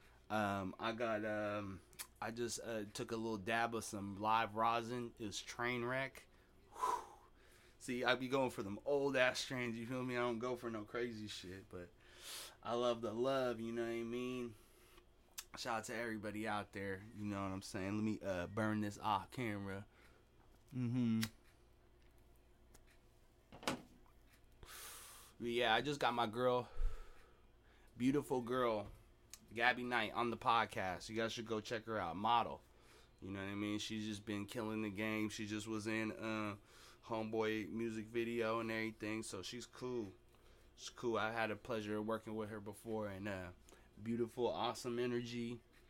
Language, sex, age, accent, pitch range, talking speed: English, male, 20-39, American, 105-120 Hz, 170 wpm